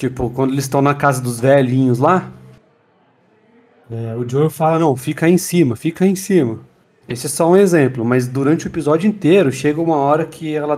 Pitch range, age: 130-175 Hz, 40-59